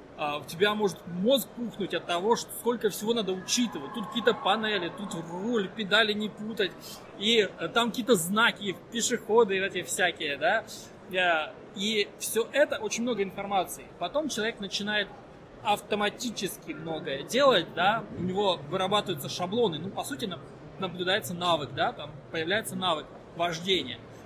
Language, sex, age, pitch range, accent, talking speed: Ukrainian, male, 20-39, 175-225 Hz, native, 140 wpm